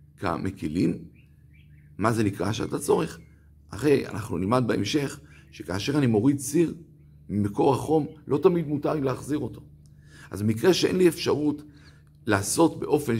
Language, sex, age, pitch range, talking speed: Hebrew, male, 50-69, 90-145 Hz, 130 wpm